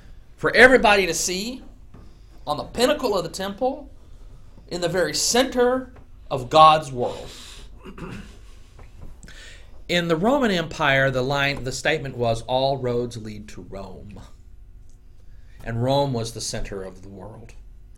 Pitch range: 105-140 Hz